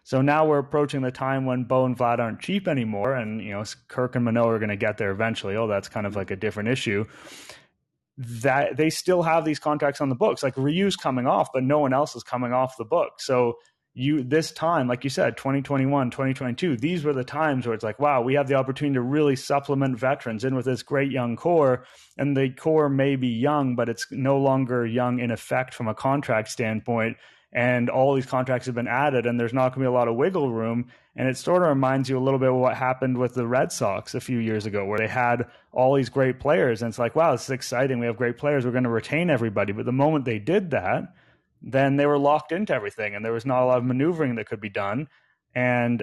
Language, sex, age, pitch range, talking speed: English, male, 30-49, 120-140 Hz, 245 wpm